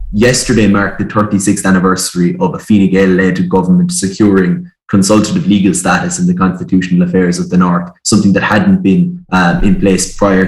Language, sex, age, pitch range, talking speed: English, male, 20-39, 95-110 Hz, 165 wpm